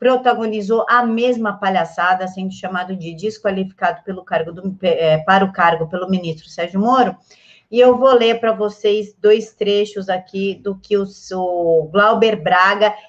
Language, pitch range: Portuguese, 180-210 Hz